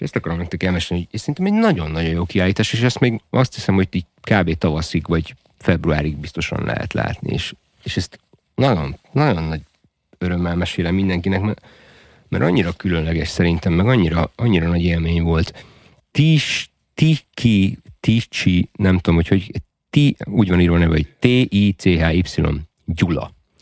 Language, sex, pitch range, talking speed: Hungarian, male, 85-105 Hz, 145 wpm